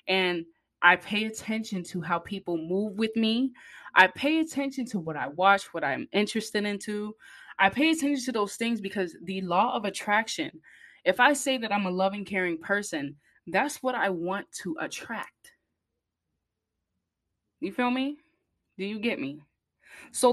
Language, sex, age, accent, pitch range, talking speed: English, female, 20-39, American, 175-235 Hz, 160 wpm